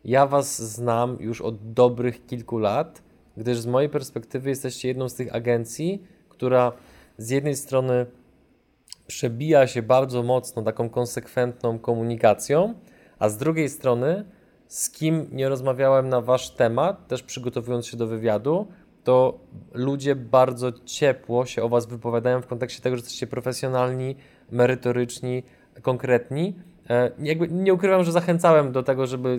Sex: male